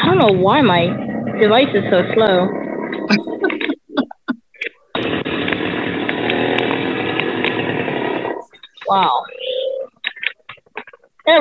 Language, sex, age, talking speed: English, female, 20-39, 60 wpm